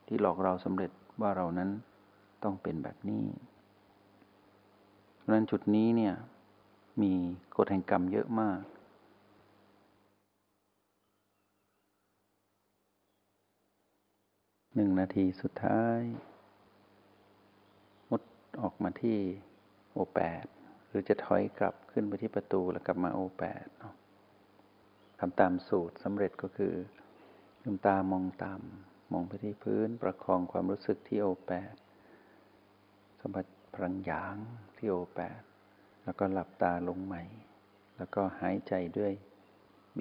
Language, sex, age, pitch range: Thai, male, 60-79, 95-105 Hz